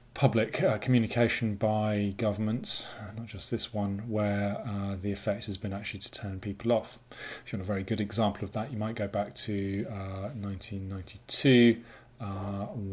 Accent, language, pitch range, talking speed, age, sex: British, English, 100-115 Hz, 170 wpm, 30-49, male